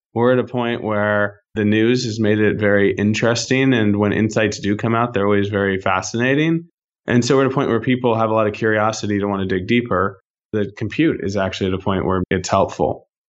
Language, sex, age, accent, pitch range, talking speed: English, male, 20-39, American, 100-120 Hz, 225 wpm